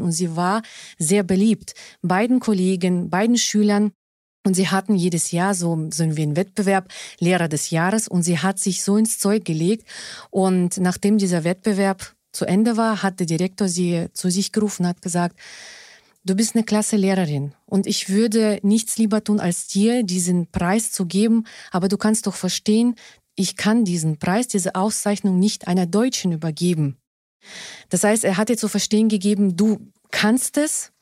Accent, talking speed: German, 175 wpm